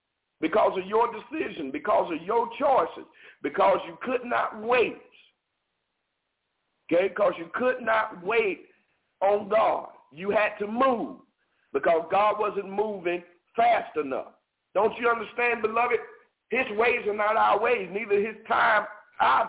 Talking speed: 140 wpm